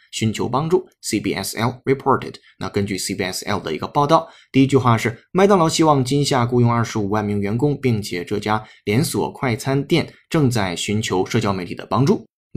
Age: 20-39